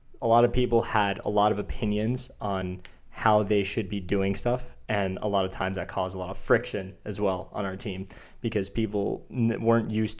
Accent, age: American, 20-39